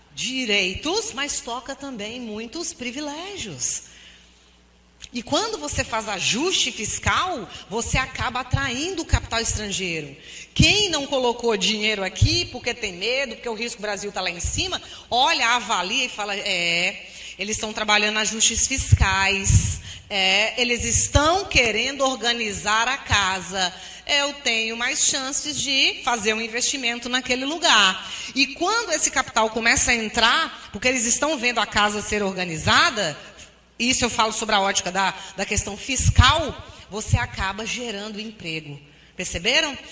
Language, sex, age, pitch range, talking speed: Portuguese, female, 30-49, 205-265 Hz, 135 wpm